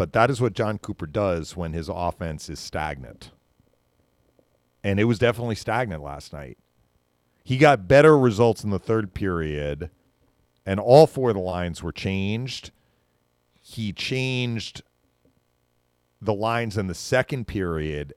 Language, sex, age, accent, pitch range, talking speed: English, male, 40-59, American, 75-110 Hz, 140 wpm